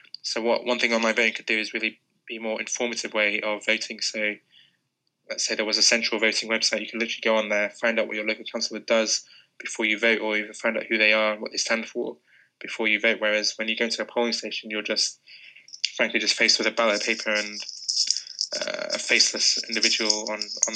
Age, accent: 20-39, British